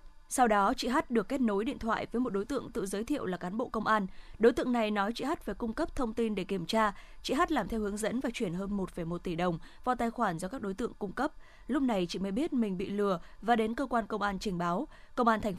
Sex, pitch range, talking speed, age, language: female, 195-240 Hz, 290 wpm, 20-39, Vietnamese